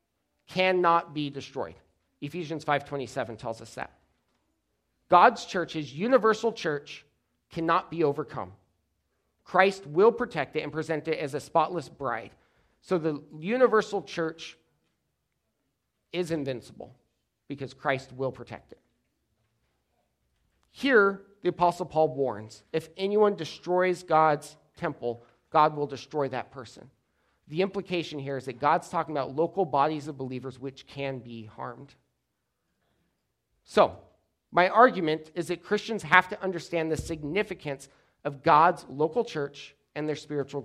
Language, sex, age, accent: English, male, 40-59, American